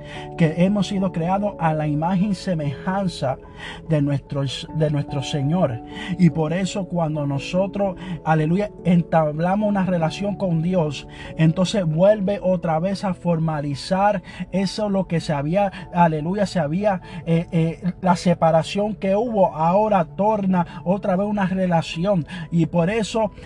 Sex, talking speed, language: male, 135 wpm, Spanish